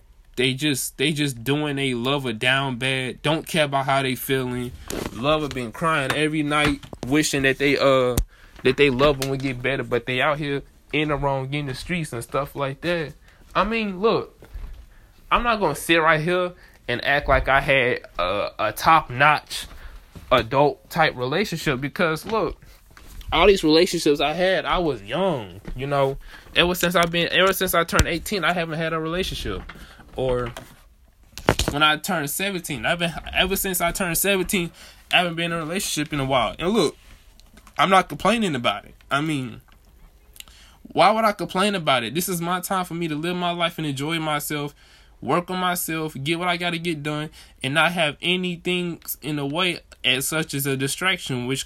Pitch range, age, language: 135-170 Hz, 20-39, English